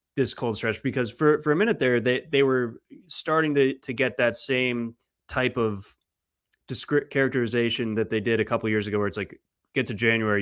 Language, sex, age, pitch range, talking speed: English, male, 20-39, 105-125 Hz, 200 wpm